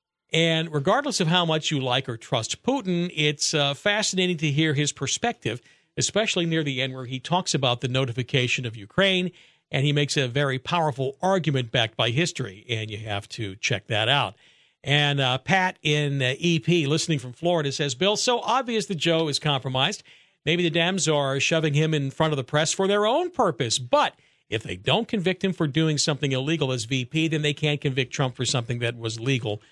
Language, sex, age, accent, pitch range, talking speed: English, male, 50-69, American, 130-180 Hz, 200 wpm